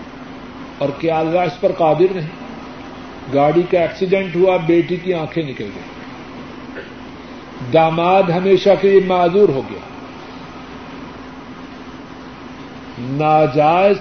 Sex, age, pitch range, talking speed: male, 50-69, 150-185 Hz, 105 wpm